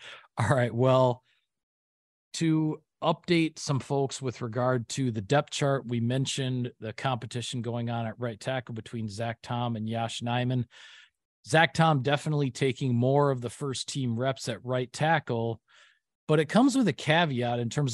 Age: 40-59